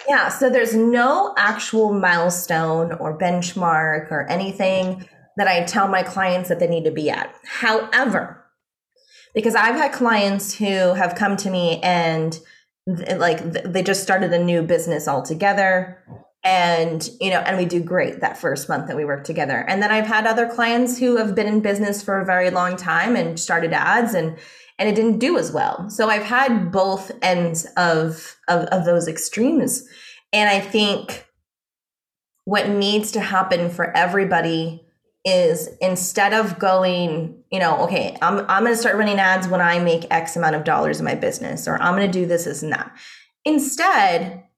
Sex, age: female, 20-39